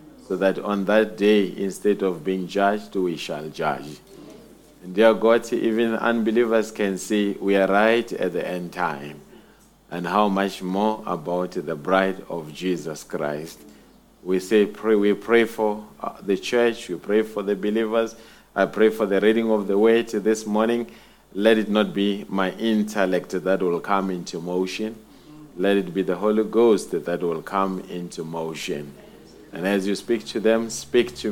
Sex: male